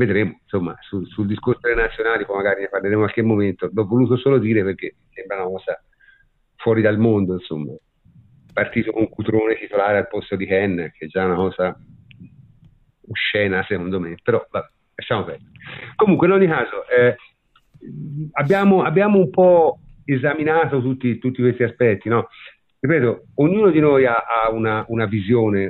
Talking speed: 165 wpm